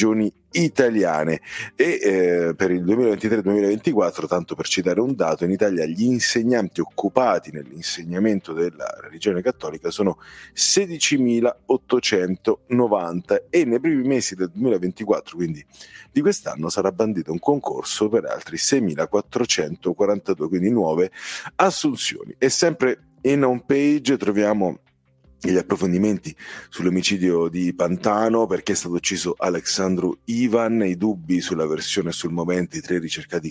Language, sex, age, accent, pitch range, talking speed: Italian, male, 40-59, native, 85-110 Hz, 125 wpm